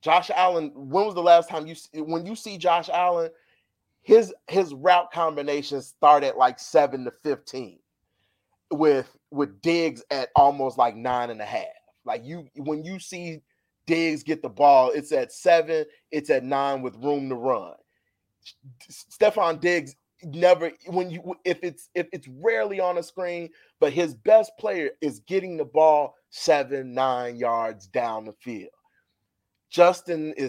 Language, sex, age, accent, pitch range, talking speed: English, male, 30-49, American, 130-170 Hz, 155 wpm